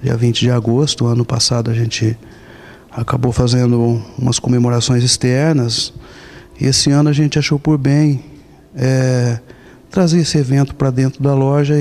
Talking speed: 140 wpm